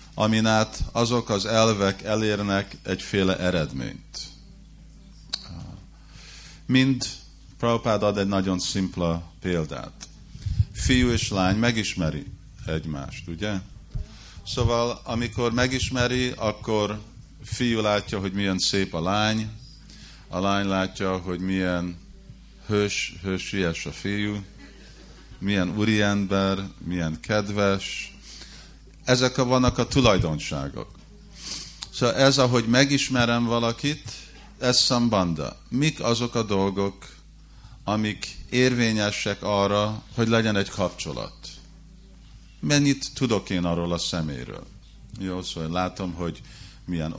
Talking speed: 100 wpm